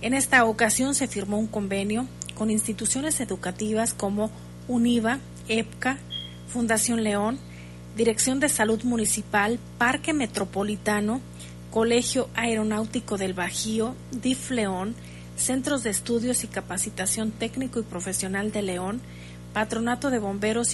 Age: 40-59